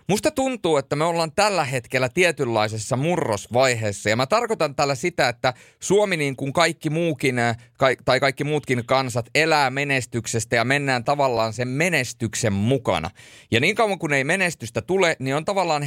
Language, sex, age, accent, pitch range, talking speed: Finnish, male, 30-49, native, 115-155 Hz, 160 wpm